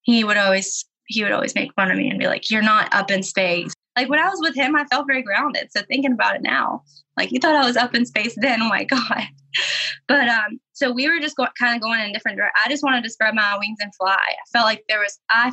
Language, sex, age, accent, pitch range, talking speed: English, female, 20-39, American, 205-260 Hz, 285 wpm